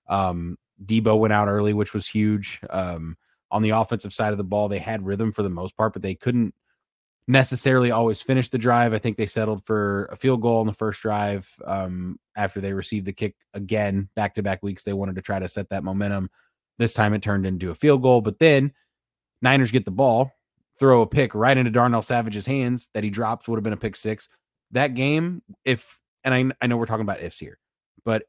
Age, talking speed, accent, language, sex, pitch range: 20-39, 220 wpm, American, English, male, 100-125 Hz